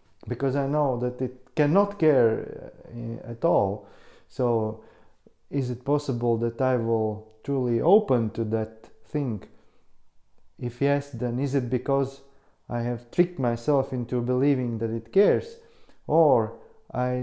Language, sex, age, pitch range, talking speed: English, male, 30-49, 120-140 Hz, 130 wpm